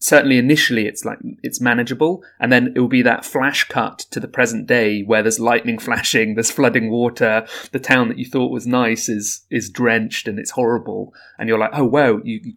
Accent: British